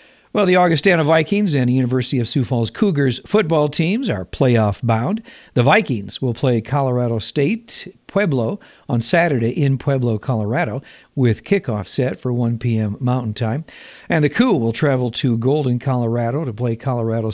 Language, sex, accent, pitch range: Japanese, male, American, 115-145 Hz